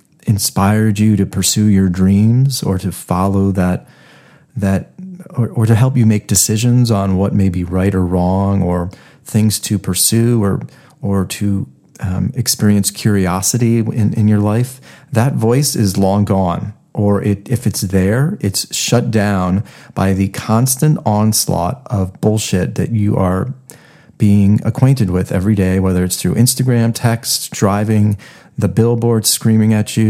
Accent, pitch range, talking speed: American, 100-130 Hz, 155 wpm